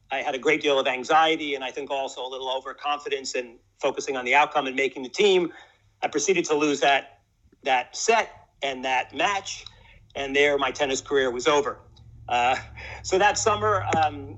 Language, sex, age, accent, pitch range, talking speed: English, male, 50-69, American, 140-170 Hz, 190 wpm